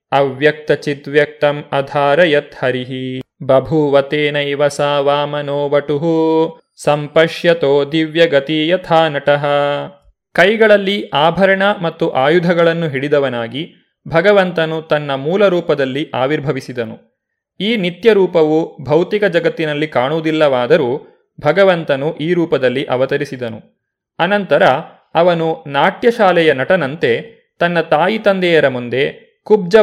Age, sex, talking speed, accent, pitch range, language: 30-49, male, 70 wpm, native, 145-185 Hz, Kannada